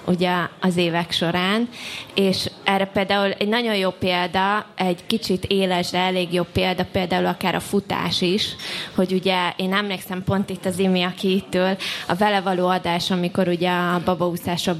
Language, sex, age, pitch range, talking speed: Hungarian, female, 20-39, 180-200 Hz, 155 wpm